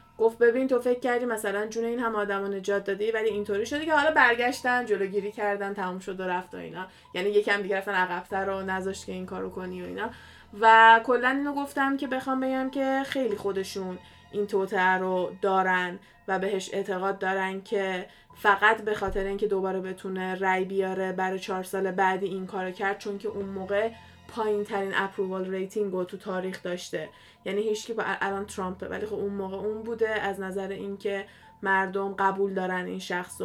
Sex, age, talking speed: female, 20-39, 185 wpm